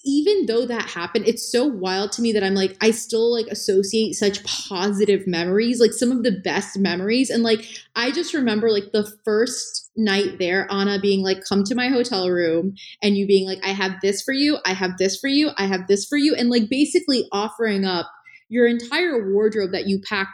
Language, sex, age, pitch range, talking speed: English, female, 20-39, 190-225 Hz, 215 wpm